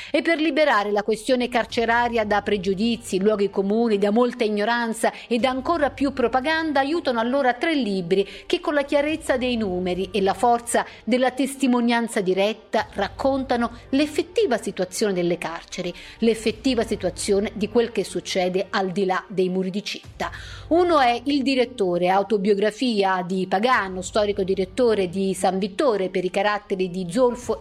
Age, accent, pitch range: 50-69, native, 195-255 Hz